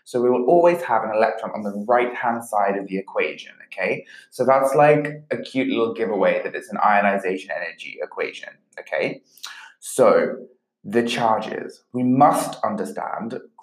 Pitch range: 115-160 Hz